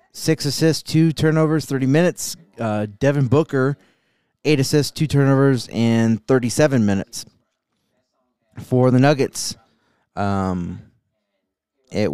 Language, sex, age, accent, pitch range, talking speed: English, male, 20-39, American, 110-140 Hz, 105 wpm